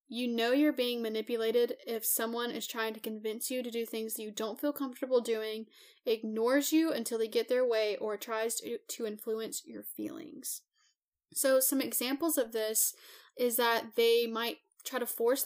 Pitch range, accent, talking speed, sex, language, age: 220-265 Hz, American, 180 wpm, female, English, 10-29